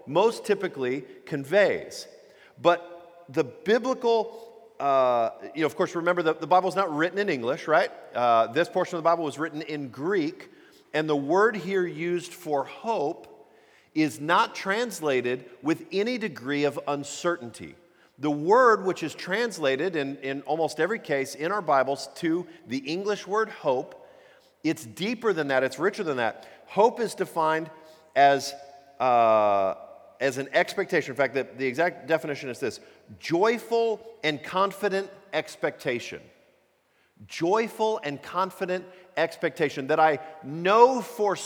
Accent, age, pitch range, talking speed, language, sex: American, 40-59, 150-210 Hz, 145 wpm, English, male